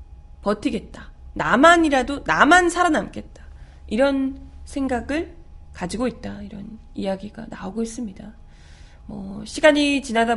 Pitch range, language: 200-290 Hz, Korean